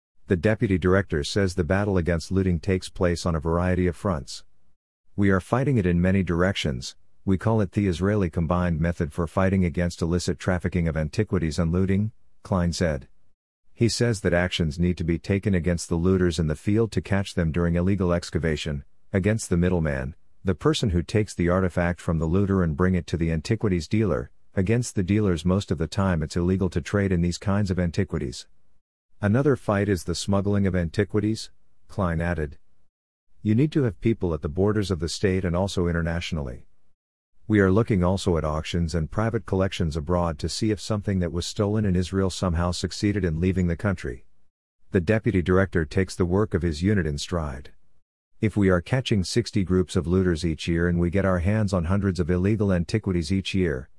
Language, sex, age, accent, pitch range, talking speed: English, male, 50-69, American, 85-100 Hz, 195 wpm